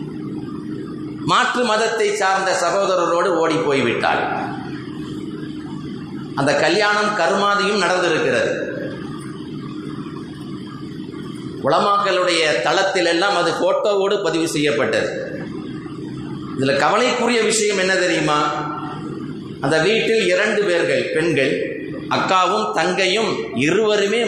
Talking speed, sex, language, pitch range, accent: 70 wpm, male, Tamil, 180-265 Hz, native